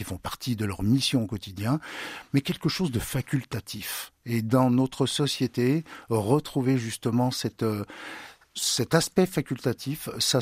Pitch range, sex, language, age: 105-135 Hz, male, French, 50-69